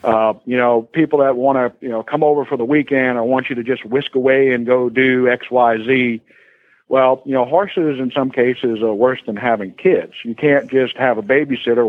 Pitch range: 110-130 Hz